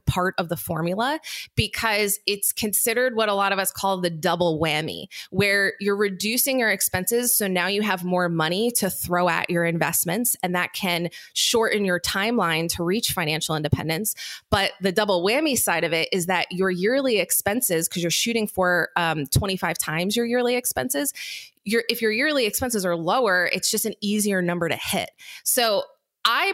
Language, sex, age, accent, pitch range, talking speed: English, female, 20-39, American, 175-220 Hz, 180 wpm